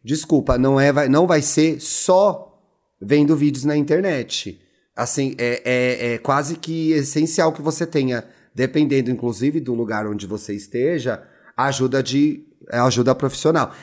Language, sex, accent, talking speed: Portuguese, male, Brazilian, 130 wpm